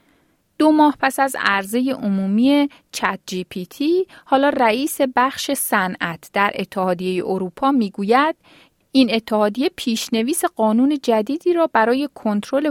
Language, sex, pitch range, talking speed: Persian, female, 200-270 Hz, 125 wpm